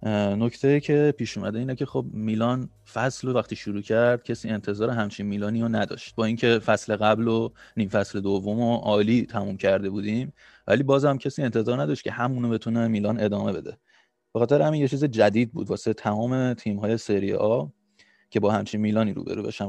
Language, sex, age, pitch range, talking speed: Persian, male, 30-49, 105-125 Hz, 185 wpm